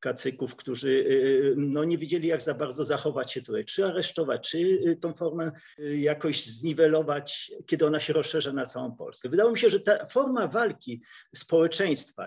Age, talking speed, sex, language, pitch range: 50-69, 160 wpm, male, Polish, 135-175 Hz